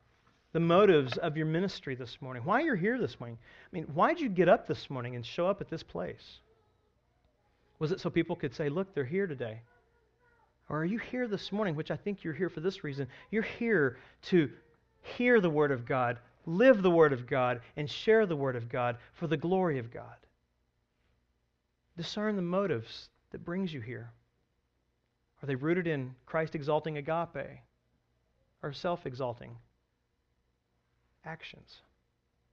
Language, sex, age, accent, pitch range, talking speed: English, male, 40-59, American, 120-170 Hz, 170 wpm